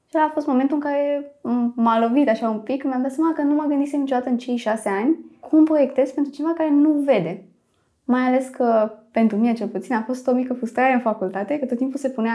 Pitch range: 200-275 Hz